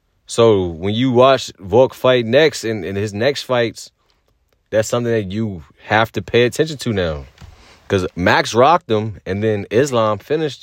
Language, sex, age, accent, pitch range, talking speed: English, male, 30-49, American, 90-120 Hz, 170 wpm